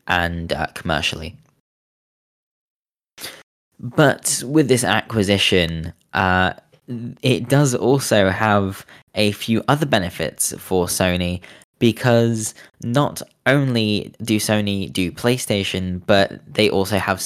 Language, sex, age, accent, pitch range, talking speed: English, male, 10-29, British, 95-125 Hz, 100 wpm